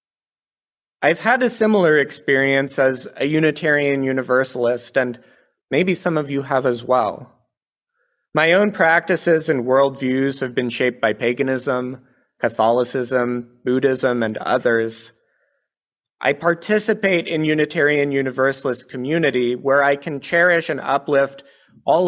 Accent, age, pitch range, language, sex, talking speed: American, 30-49, 125-155 Hz, English, male, 120 wpm